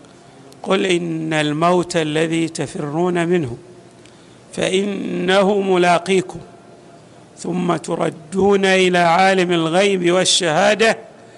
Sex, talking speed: male, 75 wpm